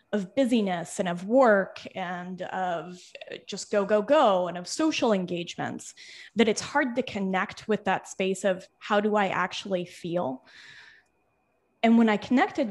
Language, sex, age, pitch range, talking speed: English, female, 20-39, 185-230 Hz, 155 wpm